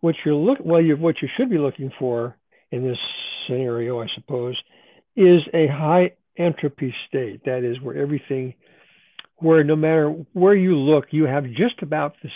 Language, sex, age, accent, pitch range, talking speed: English, male, 60-79, American, 140-175 Hz, 175 wpm